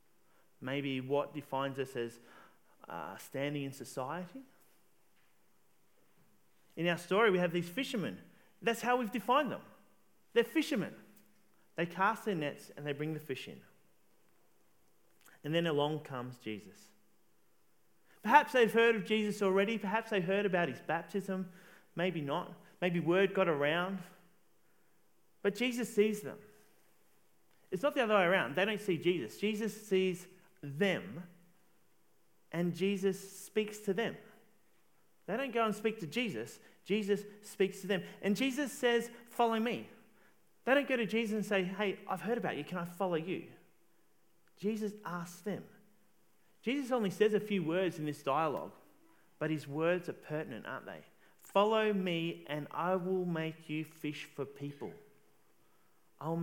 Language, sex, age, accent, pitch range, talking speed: English, male, 30-49, Australian, 160-215 Hz, 150 wpm